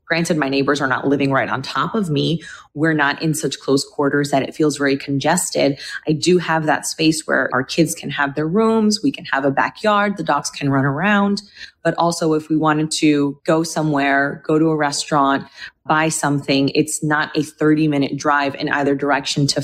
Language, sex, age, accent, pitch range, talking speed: English, female, 20-39, American, 140-170 Hz, 210 wpm